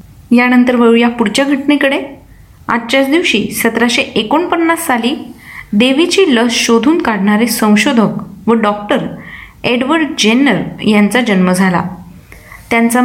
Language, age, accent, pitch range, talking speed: Marathi, 20-39, native, 205-265 Hz, 105 wpm